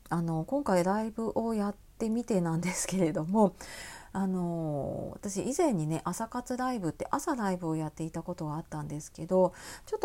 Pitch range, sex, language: 170-225 Hz, female, Japanese